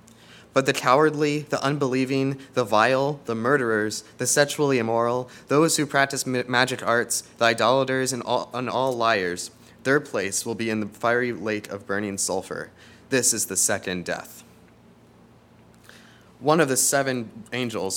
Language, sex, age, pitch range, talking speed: English, male, 20-39, 105-130 Hz, 145 wpm